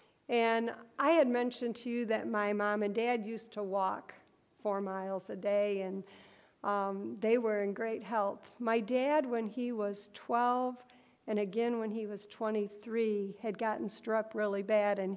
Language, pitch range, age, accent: English, 205-230 Hz, 50-69, American